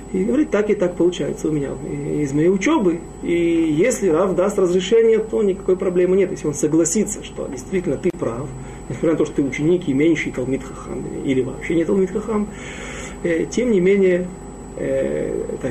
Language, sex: Russian, male